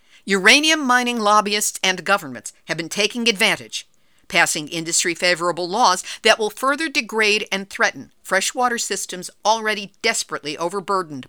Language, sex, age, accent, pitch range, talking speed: English, female, 50-69, American, 170-225 Hz, 120 wpm